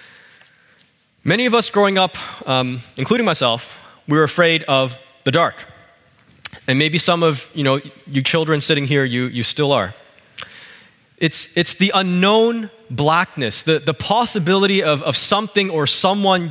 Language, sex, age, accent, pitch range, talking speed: English, male, 20-39, American, 135-180 Hz, 150 wpm